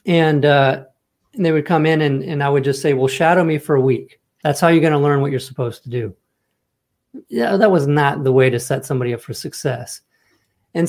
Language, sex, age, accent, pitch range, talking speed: English, male, 40-59, American, 130-160 Hz, 235 wpm